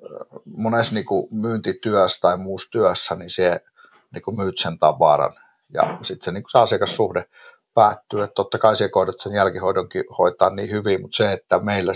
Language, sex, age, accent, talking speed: Finnish, male, 50-69, native, 140 wpm